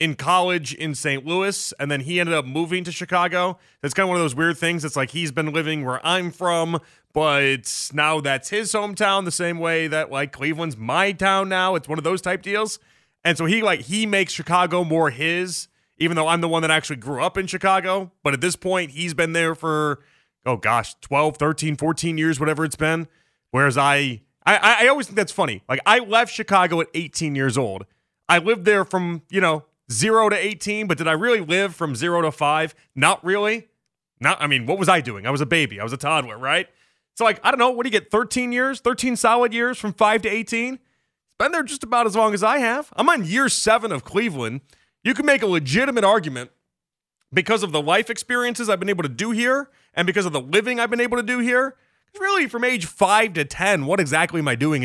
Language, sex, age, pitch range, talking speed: English, male, 30-49, 155-215 Hz, 230 wpm